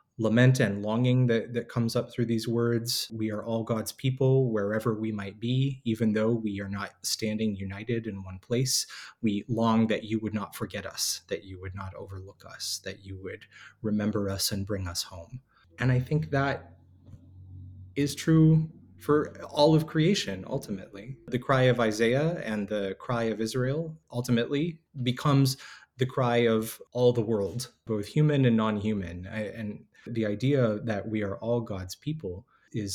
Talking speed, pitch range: 170 wpm, 100-125 Hz